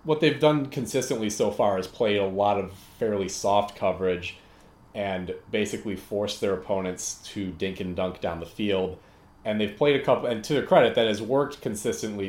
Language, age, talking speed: English, 30-49, 190 wpm